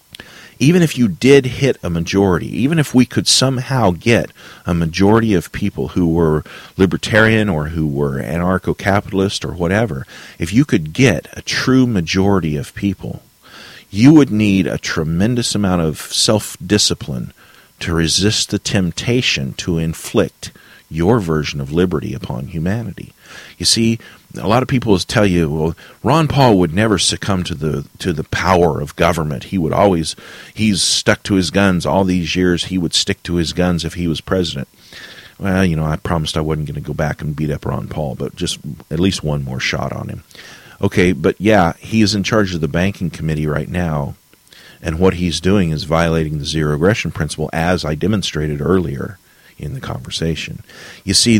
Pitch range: 80-105 Hz